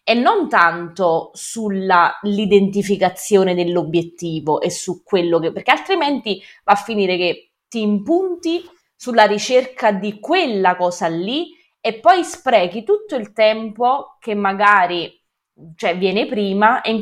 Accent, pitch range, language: native, 175-220 Hz, Italian